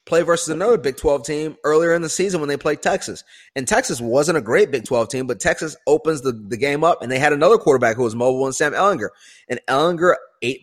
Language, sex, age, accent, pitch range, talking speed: English, male, 30-49, American, 130-160 Hz, 245 wpm